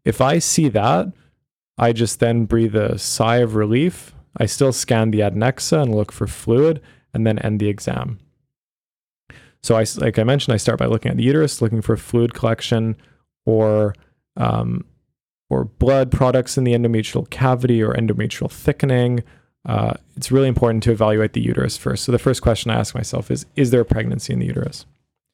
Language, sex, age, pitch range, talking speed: English, male, 20-39, 110-130 Hz, 185 wpm